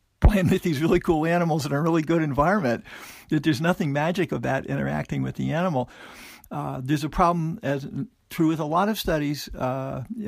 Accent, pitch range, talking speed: American, 130-165 Hz, 180 wpm